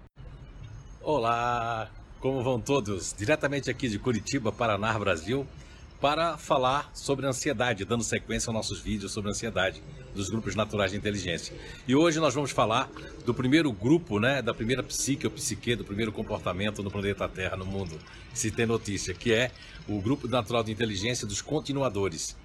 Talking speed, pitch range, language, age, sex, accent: 160 wpm, 100-130 Hz, Portuguese, 60-79, male, Brazilian